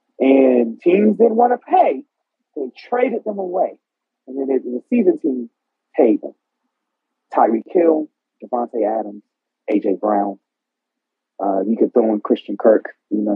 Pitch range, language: 115-195 Hz, English